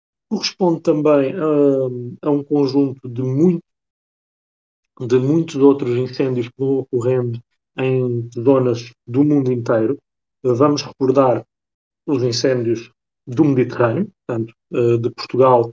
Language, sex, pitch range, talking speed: Portuguese, male, 120-145 Hz, 120 wpm